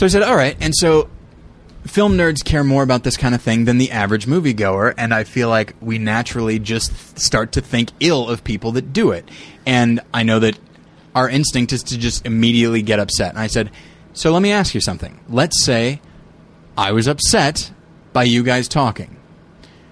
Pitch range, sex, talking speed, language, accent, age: 100-135 Hz, male, 200 wpm, English, American, 20-39